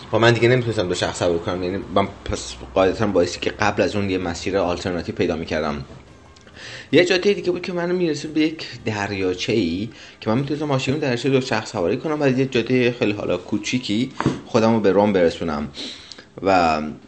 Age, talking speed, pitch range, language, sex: 30-49, 190 wpm, 90-125 Hz, Persian, male